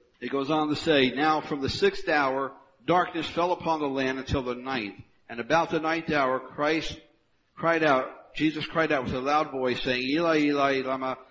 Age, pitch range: 60-79, 125-160 Hz